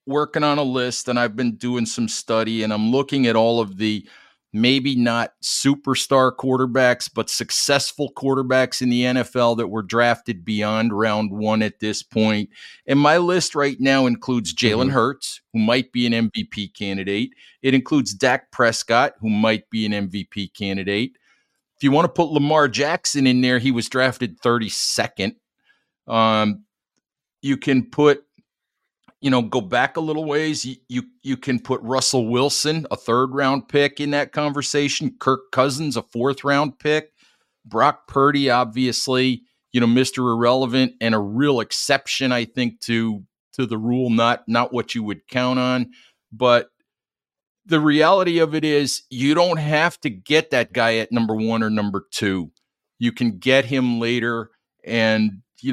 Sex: male